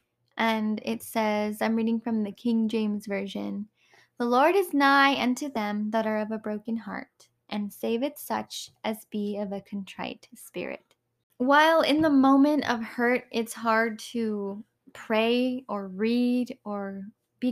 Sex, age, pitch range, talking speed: female, 10-29, 195-230 Hz, 160 wpm